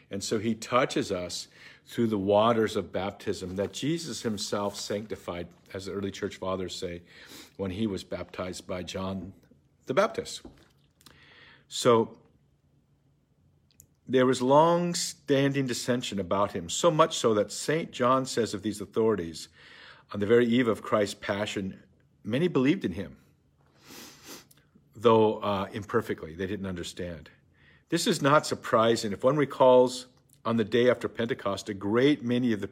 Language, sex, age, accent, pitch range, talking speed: English, male, 50-69, American, 100-125 Hz, 145 wpm